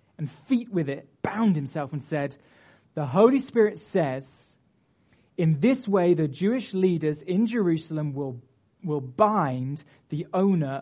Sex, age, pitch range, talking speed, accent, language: male, 30-49, 145-230 Hz, 140 wpm, British, English